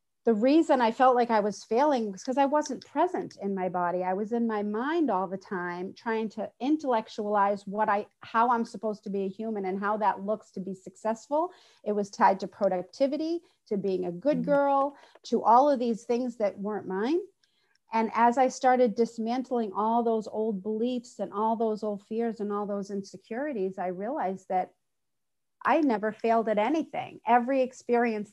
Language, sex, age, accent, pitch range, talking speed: English, female, 40-59, American, 200-240 Hz, 190 wpm